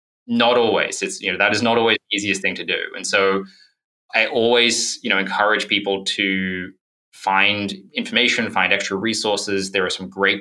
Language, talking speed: English, 185 wpm